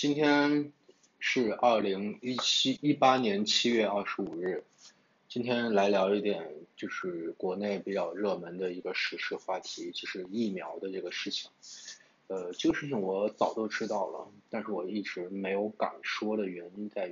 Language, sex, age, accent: Chinese, male, 20-39, native